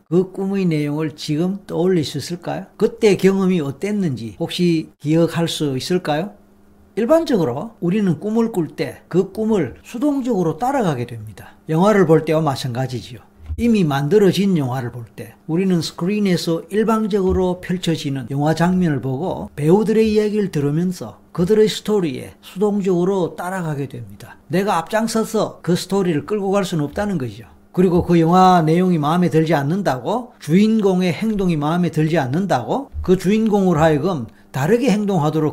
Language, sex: Korean, male